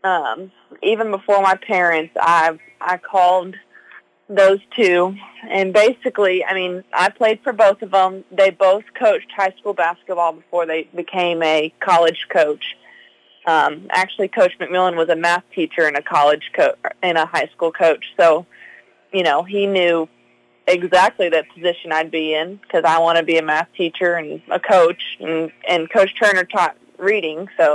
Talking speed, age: 170 wpm, 20-39